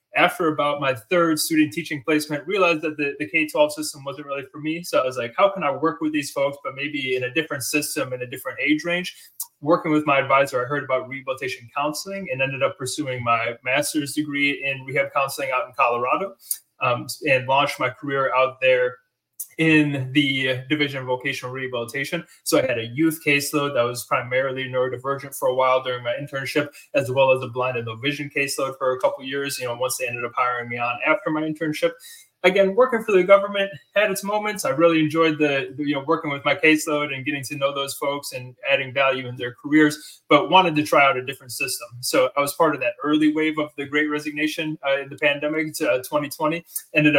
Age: 20-39